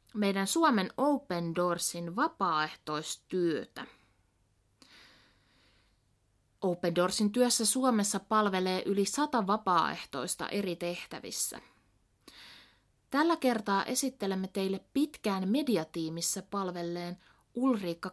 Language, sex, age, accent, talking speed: Finnish, female, 30-49, native, 75 wpm